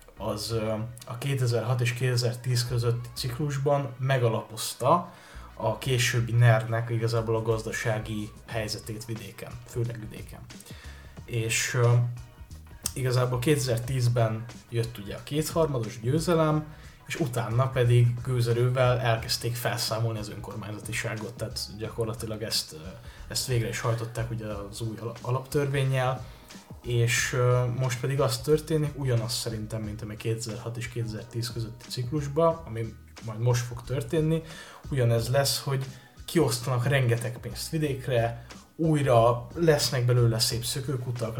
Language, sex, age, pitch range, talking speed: Hungarian, male, 20-39, 115-130 Hz, 110 wpm